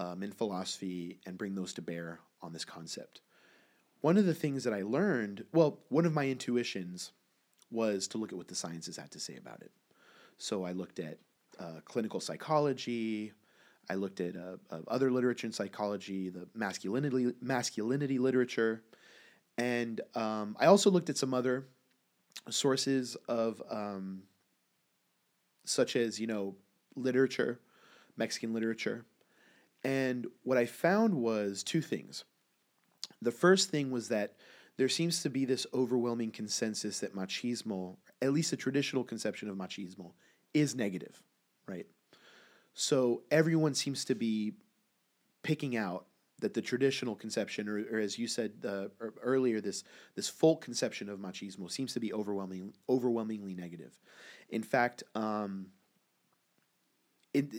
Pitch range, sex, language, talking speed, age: 100-130 Hz, male, English, 145 wpm, 30-49